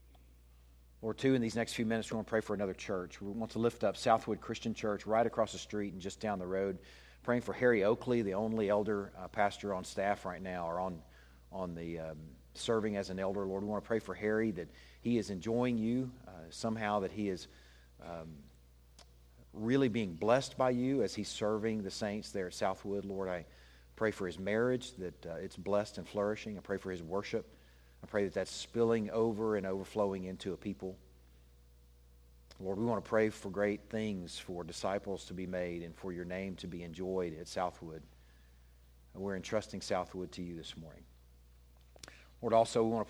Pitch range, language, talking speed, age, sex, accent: 80-110 Hz, English, 200 wpm, 50-69, male, American